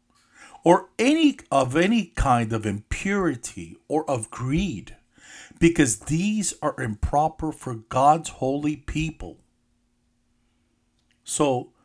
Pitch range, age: 115-170 Hz, 50-69